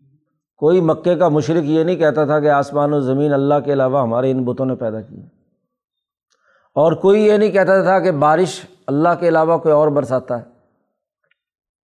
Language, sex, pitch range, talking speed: Urdu, male, 140-175 Hz, 180 wpm